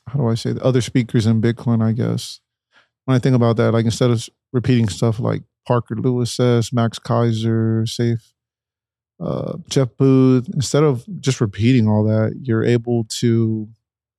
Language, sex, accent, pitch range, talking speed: English, male, American, 110-125 Hz, 170 wpm